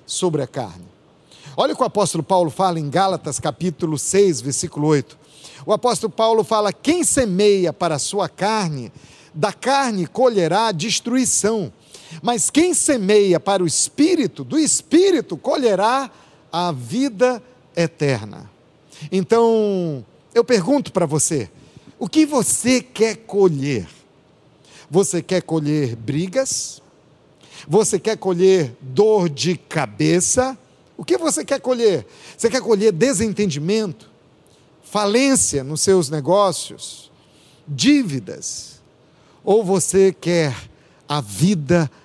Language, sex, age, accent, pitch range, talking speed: Portuguese, male, 50-69, Brazilian, 150-220 Hz, 115 wpm